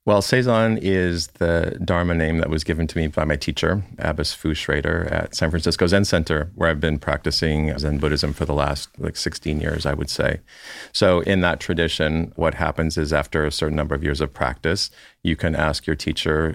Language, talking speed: English, 205 wpm